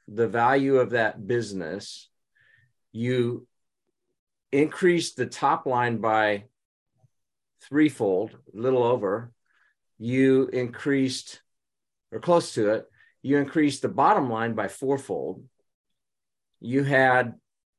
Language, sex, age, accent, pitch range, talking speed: English, male, 50-69, American, 115-140 Hz, 100 wpm